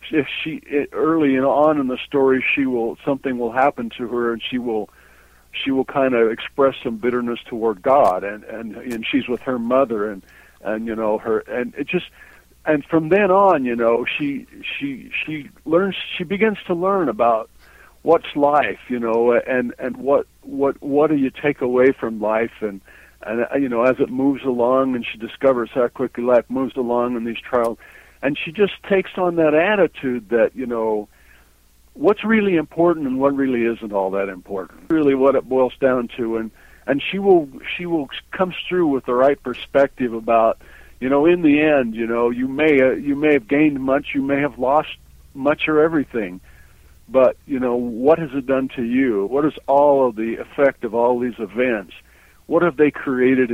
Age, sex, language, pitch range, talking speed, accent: 60-79, male, English, 115-150 Hz, 195 wpm, American